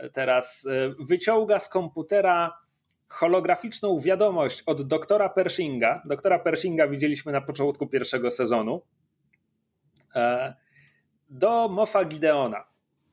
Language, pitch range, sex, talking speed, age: Polish, 145-200 Hz, male, 85 wpm, 30-49